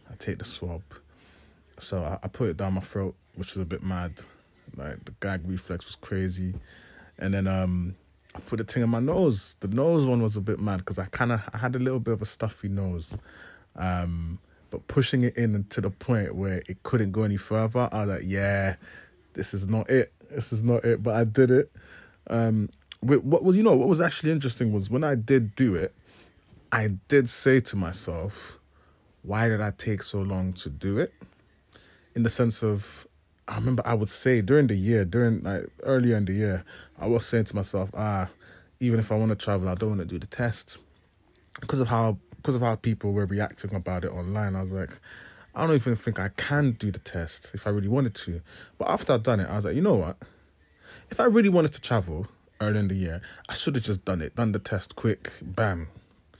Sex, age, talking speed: male, 20-39, 220 wpm